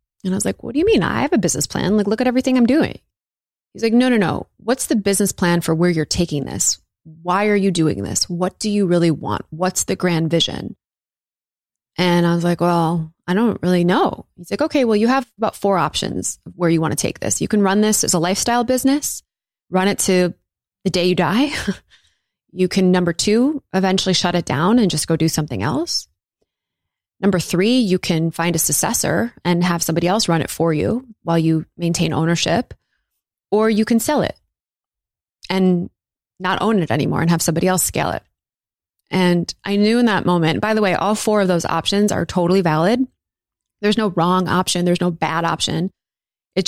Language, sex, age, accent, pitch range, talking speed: English, female, 20-39, American, 170-210 Hz, 205 wpm